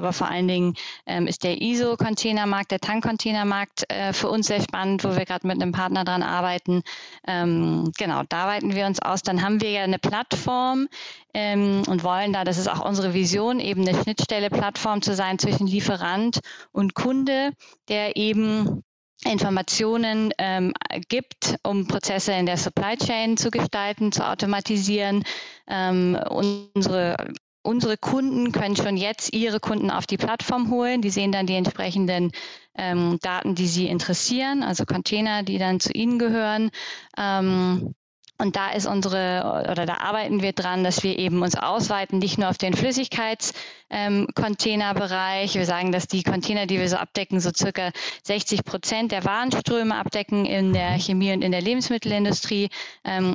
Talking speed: 160 wpm